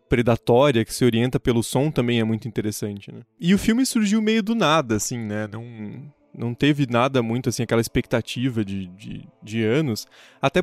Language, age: Portuguese, 20-39